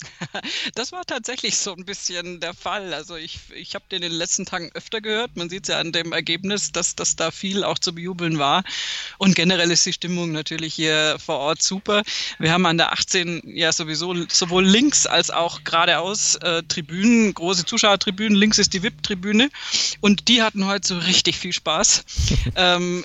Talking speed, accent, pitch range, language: 190 wpm, German, 165-195 Hz, German